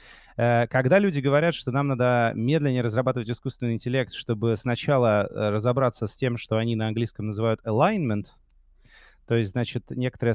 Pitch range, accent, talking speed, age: 115-145 Hz, native, 145 wpm, 30-49